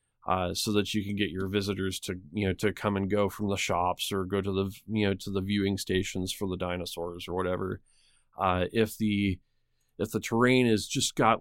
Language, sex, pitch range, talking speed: English, male, 95-110 Hz, 220 wpm